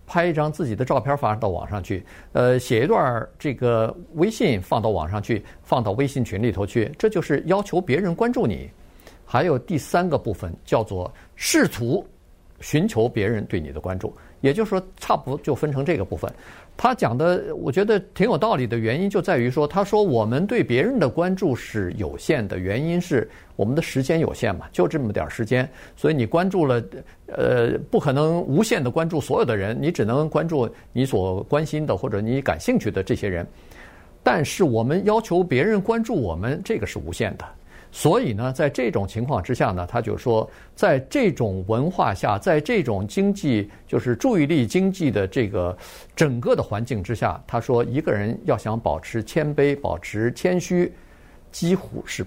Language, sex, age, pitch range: Chinese, male, 50-69, 110-175 Hz